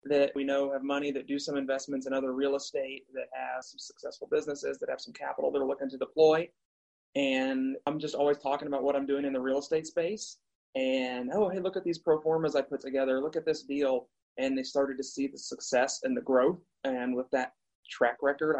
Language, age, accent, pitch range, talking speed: English, 30-49, American, 140-185 Hz, 230 wpm